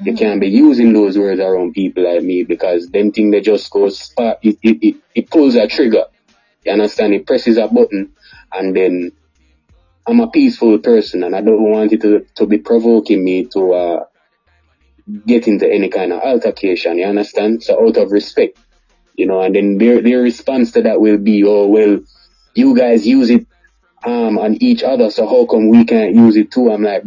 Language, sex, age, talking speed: English, male, 20-39, 200 wpm